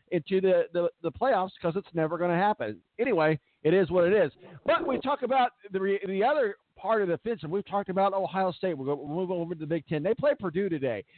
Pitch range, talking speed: 160-200 Hz, 260 wpm